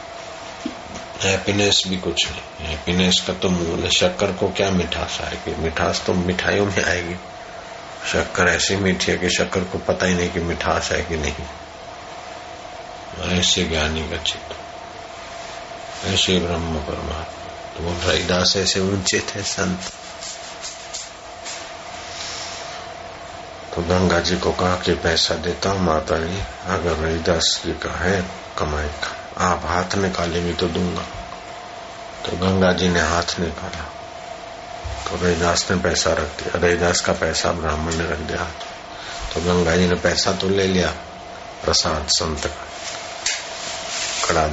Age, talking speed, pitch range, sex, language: 60-79, 130 wpm, 85-90 Hz, male, Hindi